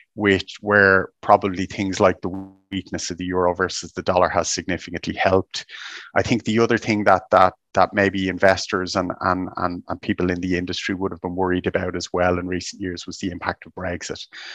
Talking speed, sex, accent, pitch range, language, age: 200 wpm, male, Irish, 90-95 Hz, English, 30-49